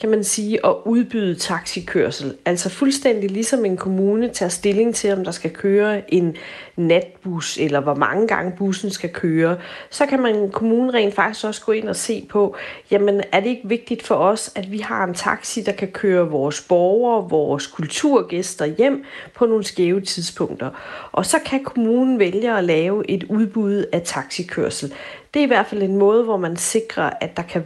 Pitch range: 170-220 Hz